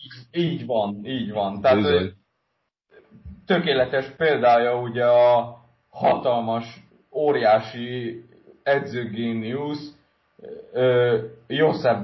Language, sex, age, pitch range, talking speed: Hungarian, male, 30-49, 110-140 Hz, 65 wpm